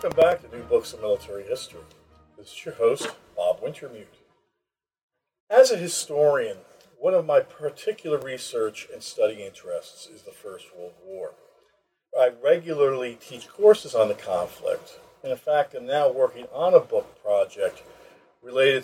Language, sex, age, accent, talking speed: English, male, 50-69, American, 155 wpm